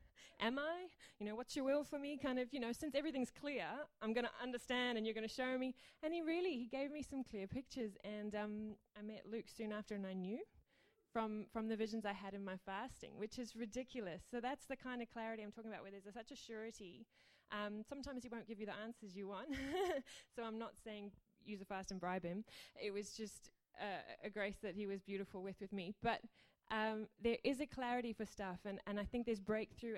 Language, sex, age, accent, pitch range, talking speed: English, female, 20-39, Australian, 200-240 Hz, 235 wpm